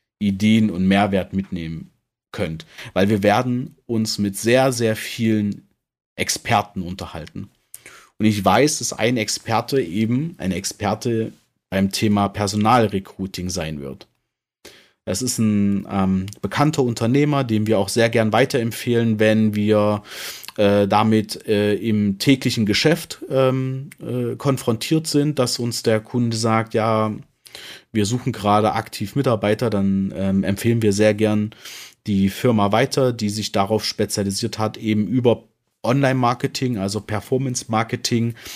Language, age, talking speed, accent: German, 40-59, 130 wpm, German